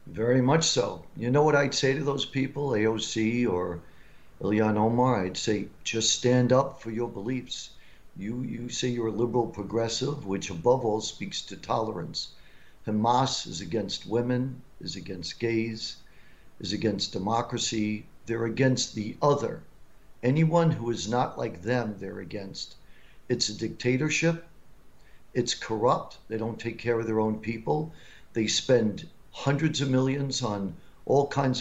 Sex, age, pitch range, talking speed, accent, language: male, 50-69, 110-130 Hz, 150 wpm, American, English